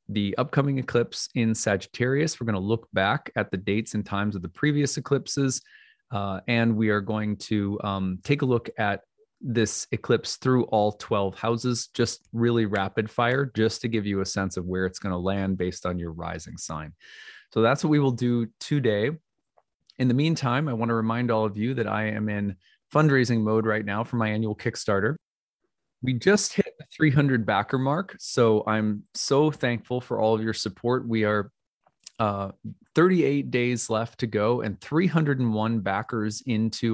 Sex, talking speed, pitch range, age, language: male, 185 wpm, 105-130 Hz, 20-39, English